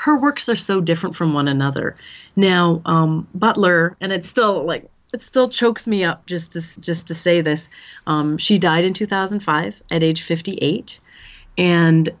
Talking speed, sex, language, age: 165 wpm, female, English, 30-49